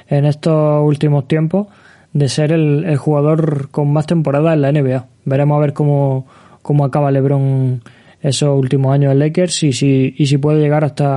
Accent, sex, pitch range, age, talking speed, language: Spanish, male, 140-165 Hz, 20-39, 185 wpm, Spanish